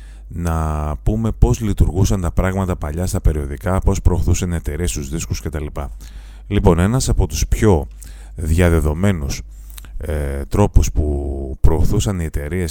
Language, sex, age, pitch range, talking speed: Greek, male, 30-49, 75-100 Hz, 130 wpm